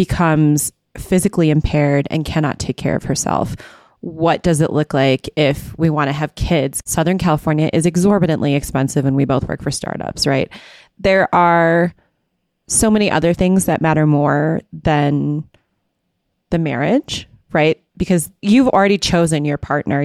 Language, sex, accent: English, female, American